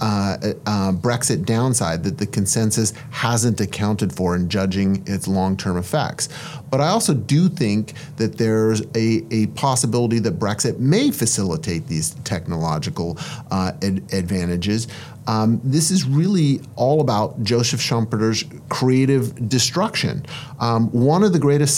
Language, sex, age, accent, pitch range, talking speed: English, male, 30-49, American, 110-145 Hz, 135 wpm